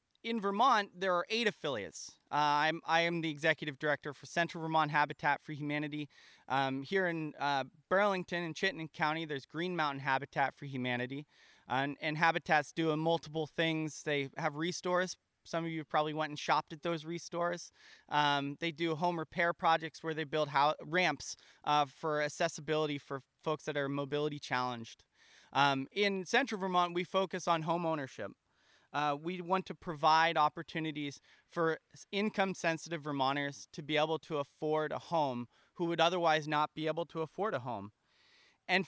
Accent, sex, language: American, male, English